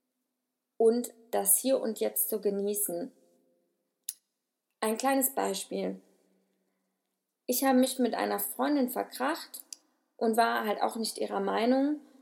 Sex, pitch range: female, 220-265 Hz